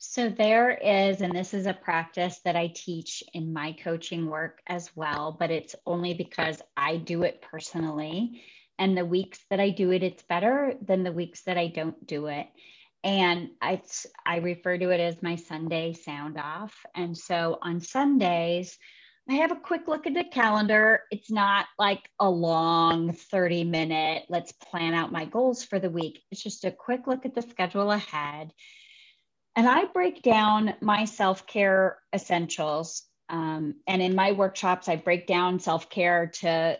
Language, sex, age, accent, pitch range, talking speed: English, female, 30-49, American, 170-215 Hz, 175 wpm